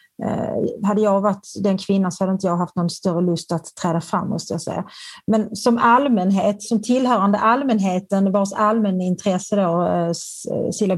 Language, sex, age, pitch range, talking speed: Swedish, female, 30-49, 185-215 Hz, 160 wpm